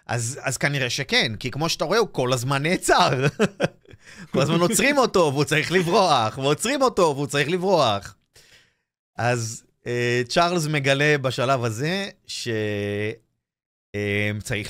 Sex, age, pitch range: male, 30-49, 115-160 Hz